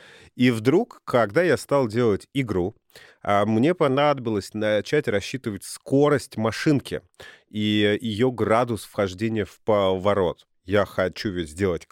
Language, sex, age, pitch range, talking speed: Russian, male, 30-49, 105-125 Hz, 110 wpm